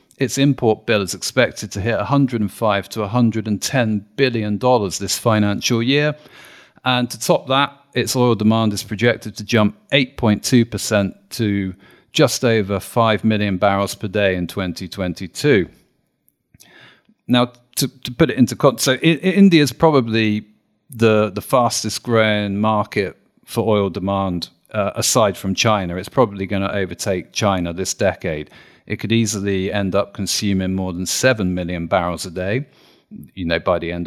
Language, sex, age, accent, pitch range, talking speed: English, male, 40-59, British, 100-120 Hz, 150 wpm